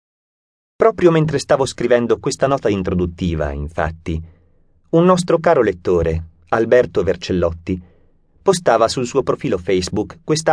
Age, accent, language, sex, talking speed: 30-49, native, Italian, male, 115 wpm